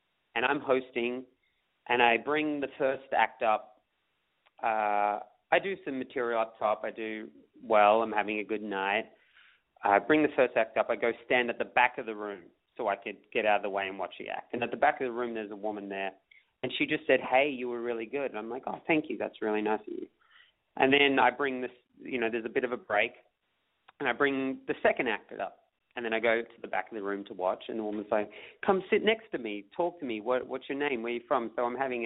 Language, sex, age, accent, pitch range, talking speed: English, male, 30-49, Australian, 105-135 Hz, 255 wpm